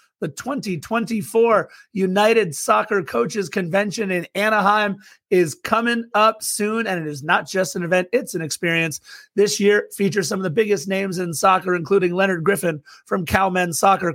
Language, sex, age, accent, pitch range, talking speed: English, male, 30-49, American, 180-210 Hz, 160 wpm